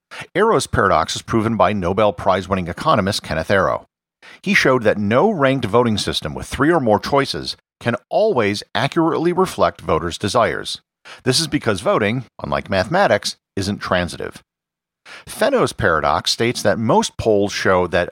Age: 50-69